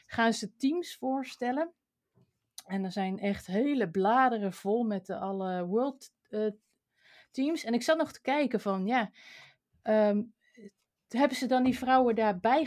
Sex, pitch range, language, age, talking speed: female, 185-245 Hz, Dutch, 30-49, 150 wpm